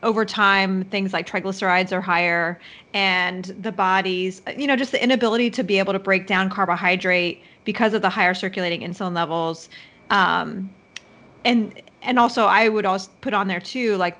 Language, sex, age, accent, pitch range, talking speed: English, female, 30-49, American, 185-220 Hz, 175 wpm